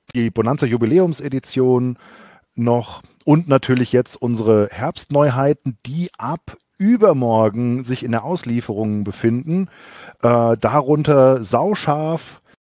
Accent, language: German, German